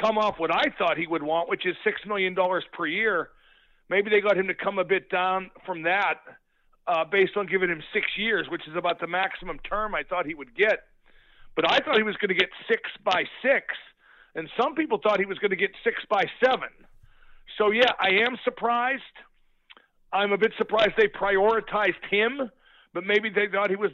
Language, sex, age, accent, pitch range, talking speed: English, male, 50-69, American, 190-230 Hz, 215 wpm